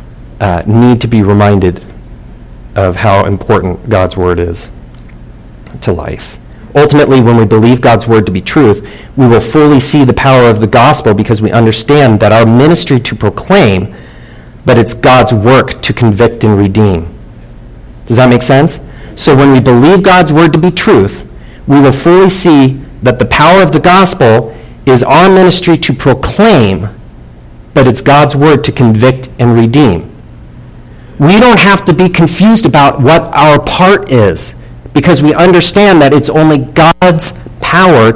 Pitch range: 105-150 Hz